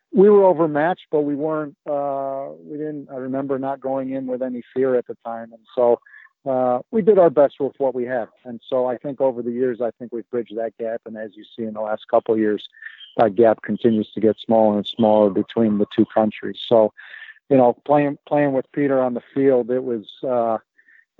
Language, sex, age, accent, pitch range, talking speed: English, male, 50-69, American, 115-135 Hz, 225 wpm